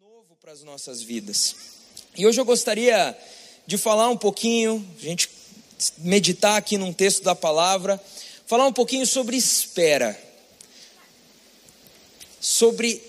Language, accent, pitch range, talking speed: English, Brazilian, 180-235 Hz, 125 wpm